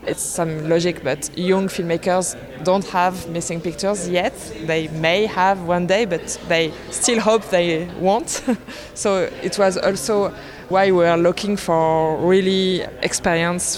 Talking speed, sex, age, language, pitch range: 150 wpm, female, 20-39, English, 160-180 Hz